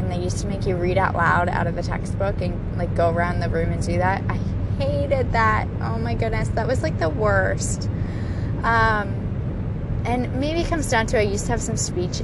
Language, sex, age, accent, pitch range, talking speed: English, female, 20-39, American, 95-105 Hz, 230 wpm